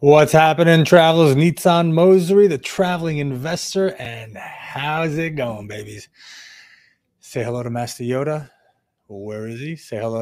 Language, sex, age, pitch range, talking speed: English, male, 30-49, 125-165 Hz, 135 wpm